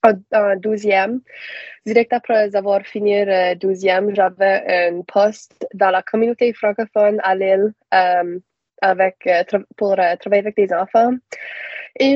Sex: female